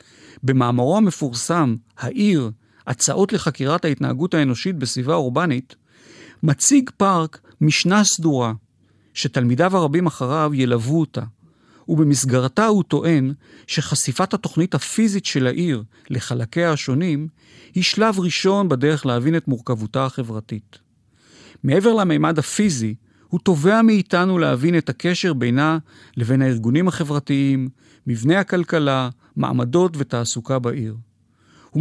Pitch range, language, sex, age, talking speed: 125-170 Hz, Hebrew, male, 40-59, 105 wpm